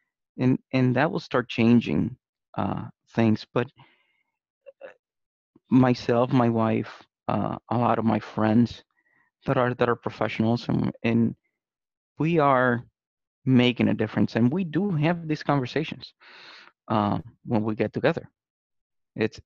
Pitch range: 110-130 Hz